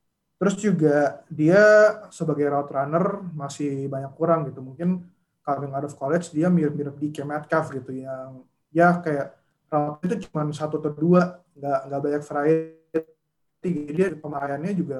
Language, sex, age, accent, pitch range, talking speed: Indonesian, male, 20-39, native, 140-170 Hz, 145 wpm